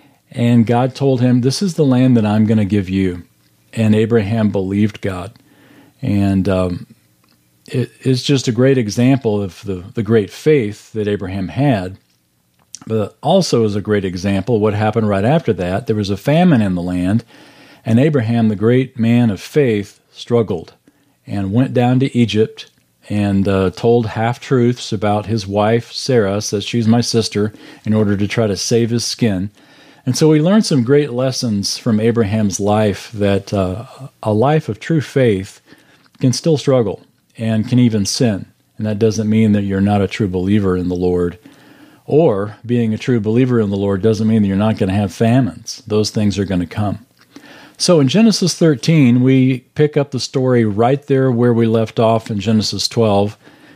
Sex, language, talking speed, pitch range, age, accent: male, English, 180 wpm, 100-125 Hz, 40-59, American